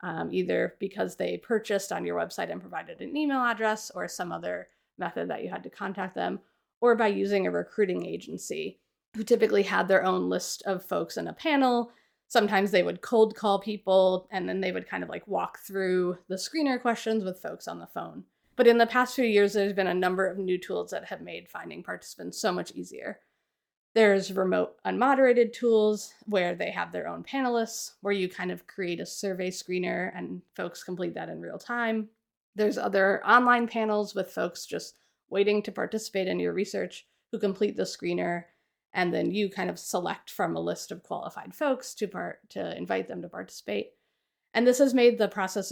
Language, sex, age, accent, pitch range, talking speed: English, female, 30-49, American, 185-230 Hz, 200 wpm